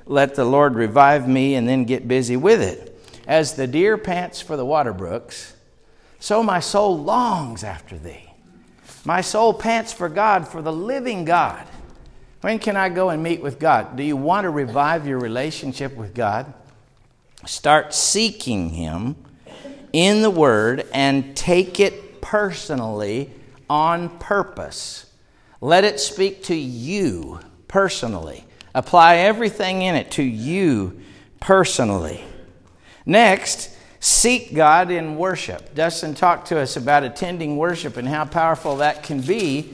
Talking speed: 140 wpm